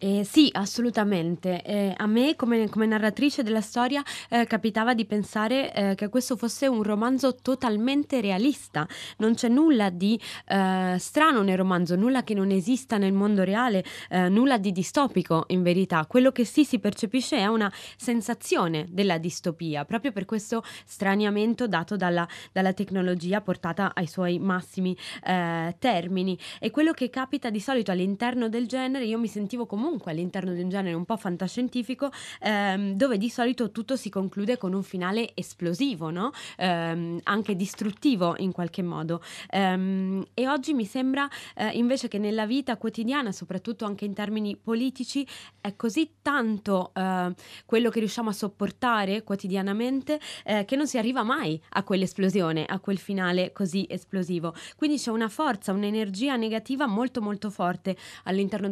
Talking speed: 155 wpm